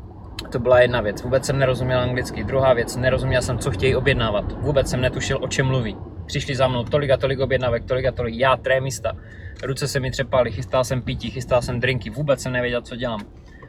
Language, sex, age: Czech, male, 20-39